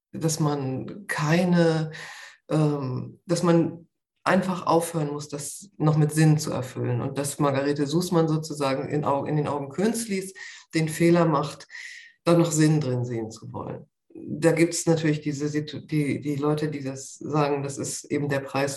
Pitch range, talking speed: 150-170 Hz, 150 wpm